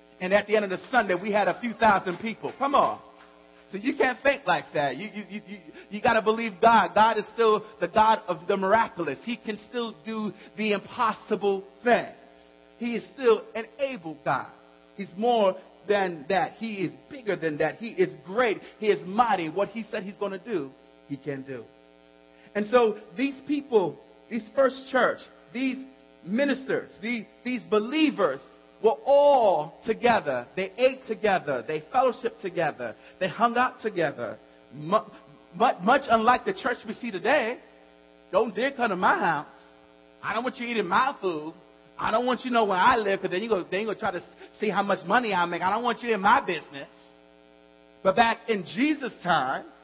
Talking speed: 190 wpm